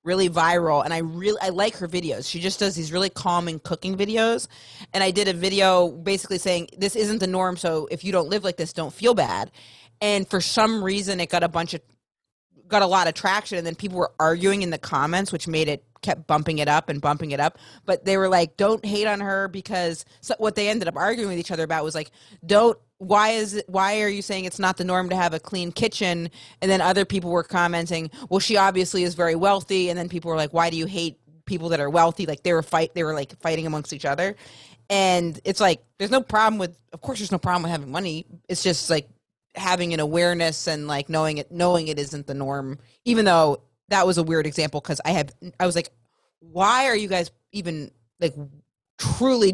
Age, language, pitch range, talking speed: 30-49, English, 160-195 Hz, 235 wpm